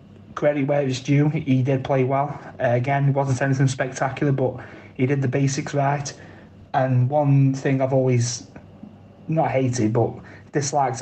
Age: 20-39